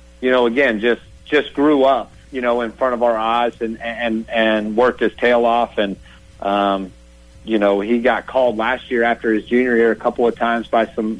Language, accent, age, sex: English, American, 50-69, male